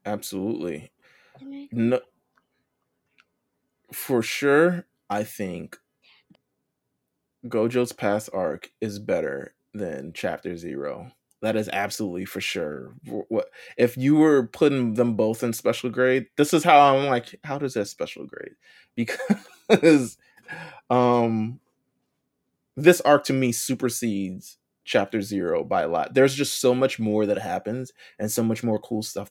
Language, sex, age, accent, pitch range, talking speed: English, male, 20-39, American, 105-135 Hz, 130 wpm